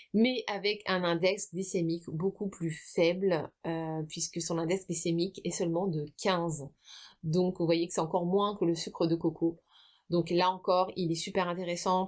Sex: female